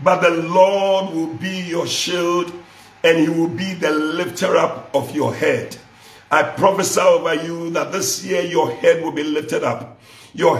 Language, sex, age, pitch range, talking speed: English, male, 50-69, 155-195 Hz, 175 wpm